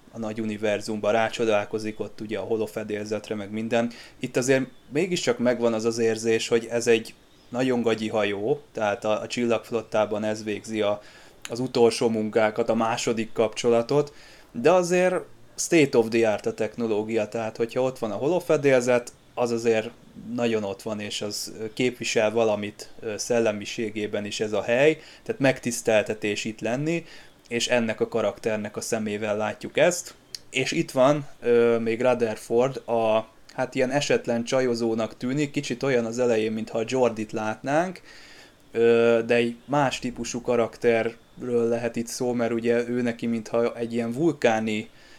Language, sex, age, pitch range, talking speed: Hungarian, male, 20-39, 110-120 Hz, 145 wpm